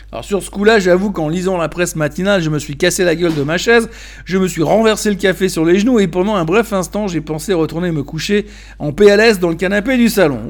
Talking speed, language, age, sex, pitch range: 255 wpm, French, 60-79, male, 160-215 Hz